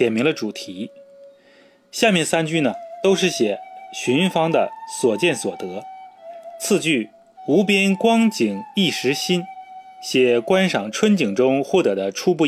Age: 30-49